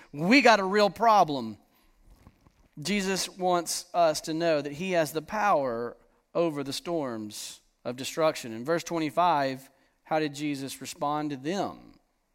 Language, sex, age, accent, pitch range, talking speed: English, male, 40-59, American, 130-200 Hz, 140 wpm